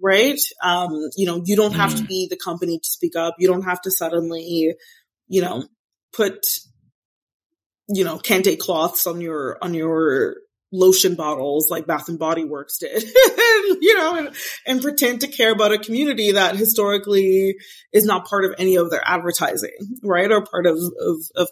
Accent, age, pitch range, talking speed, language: American, 20-39, 170-220 Hz, 180 wpm, English